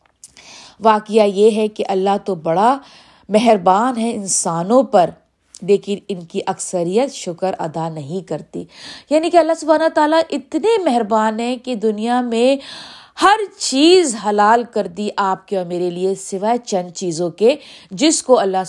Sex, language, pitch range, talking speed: female, Urdu, 190-260 Hz, 150 wpm